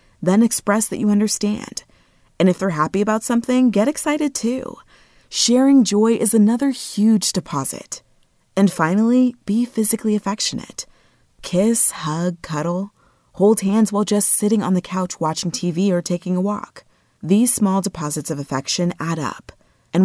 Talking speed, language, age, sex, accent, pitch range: 150 wpm, English, 30-49, female, American, 170-220 Hz